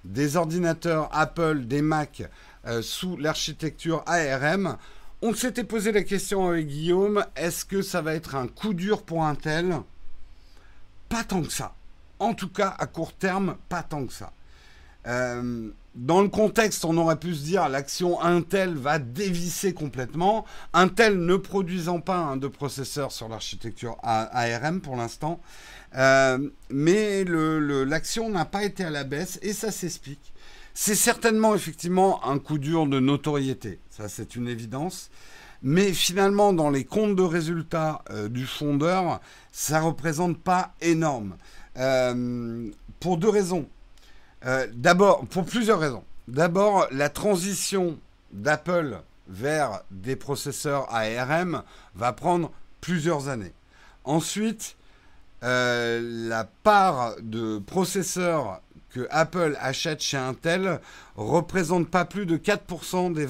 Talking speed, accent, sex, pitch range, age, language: 135 wpm, French, male, 125-180 Hz, 50-69, French